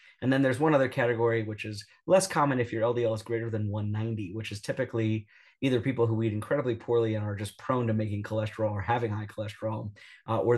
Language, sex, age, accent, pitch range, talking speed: English, male, 30-49, American, 110-125 Hz, 220 wpm